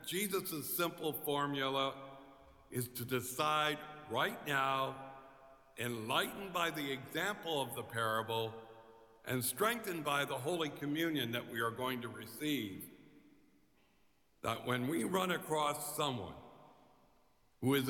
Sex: male